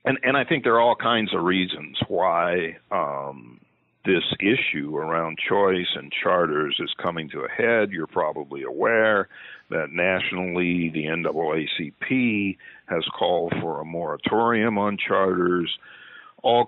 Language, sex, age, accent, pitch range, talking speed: English, male, 50-69, American, 85-120 Hz, 135 wpm